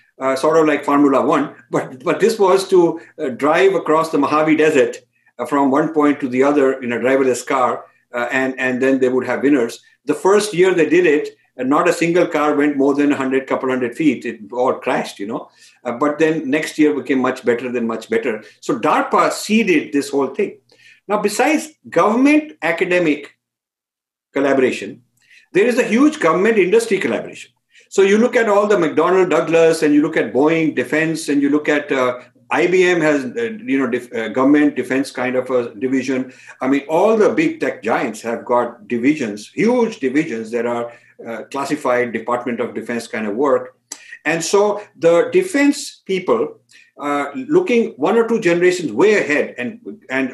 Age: 50-69